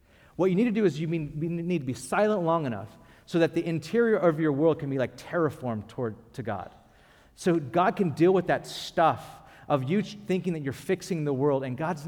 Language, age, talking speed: English, 40-59, 220 wpm